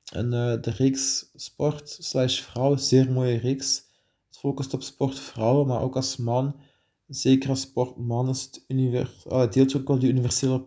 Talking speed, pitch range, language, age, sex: 150 wpm, 125-140 Hz, Dutch, 20-39, male